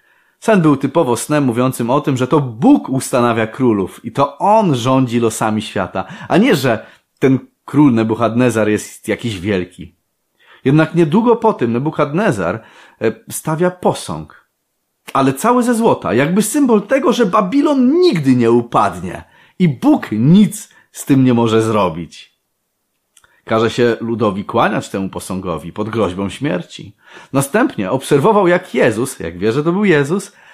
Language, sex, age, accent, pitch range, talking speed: Polish, male, 30-49, native, 110-175 Hz, 140 wpm